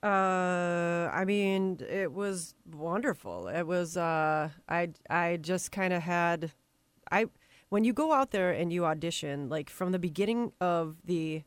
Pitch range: 155-185 Hz